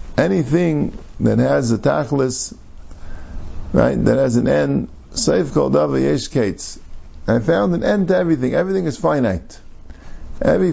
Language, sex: English, male